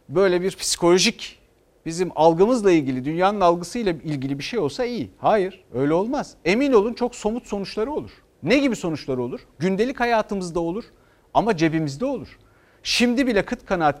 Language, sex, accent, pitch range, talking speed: Turkish, male, native, 150-225 Hz, 155 wpm